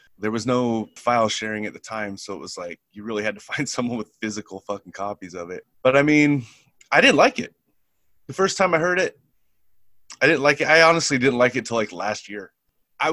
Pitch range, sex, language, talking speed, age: 110-140 Hz, male, English, 235 wpm, 30-49